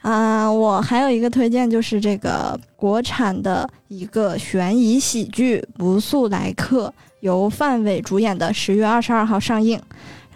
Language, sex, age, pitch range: Chinese, female, 20-39, 200-245 Hz